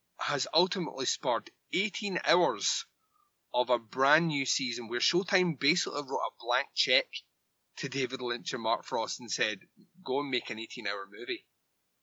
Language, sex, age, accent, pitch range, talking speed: English, male, 20-39, British, 125-185 Hz, 160 wpm